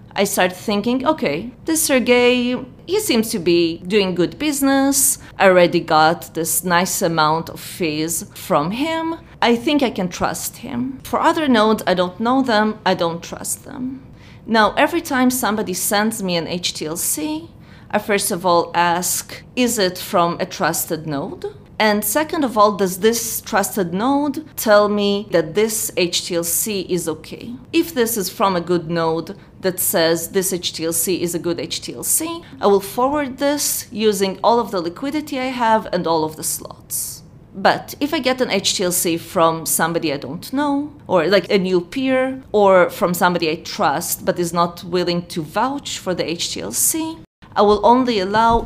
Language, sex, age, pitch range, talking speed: English, female, 30-49, 175-245 Hz, 170 wpm